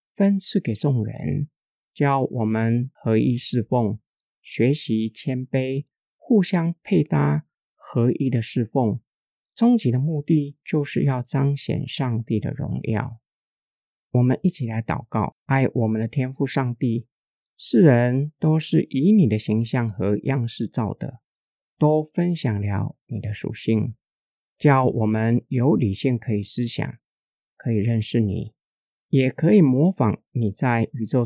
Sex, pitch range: male, 115-145 Hz